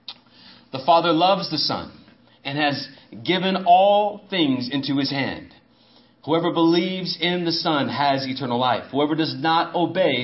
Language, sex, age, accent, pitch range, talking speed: English, male, 40-59, American, 135-175 Hz, 145 wpm